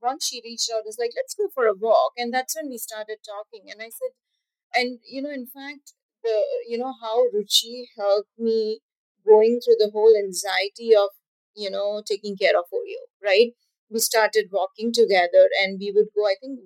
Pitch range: 210-290 Hz